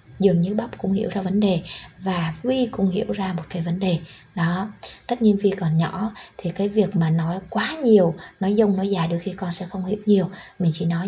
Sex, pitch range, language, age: female, 175-210 Hz, Vietnamese, 20-39